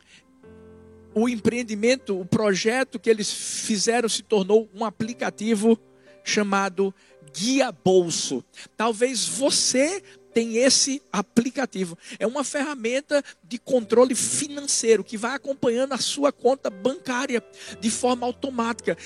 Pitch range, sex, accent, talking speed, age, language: 210-250 Hz, male, Brazilian, 110 wpm, 50-69, Portuguese